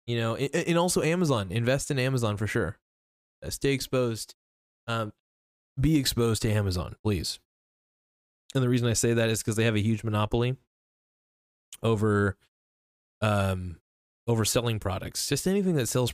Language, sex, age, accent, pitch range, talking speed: English, male, 20-39, American, 100-120 Hz, 150 wpm